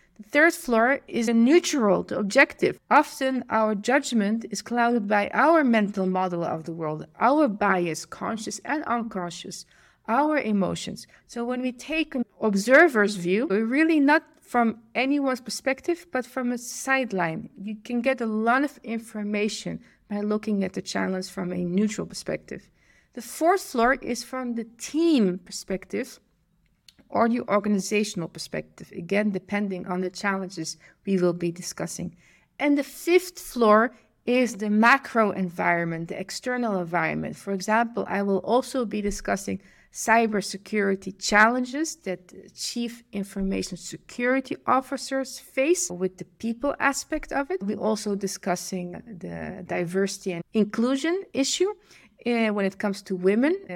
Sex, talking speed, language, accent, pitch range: female, 140 wpm, English, Dutch, 190-255 Hz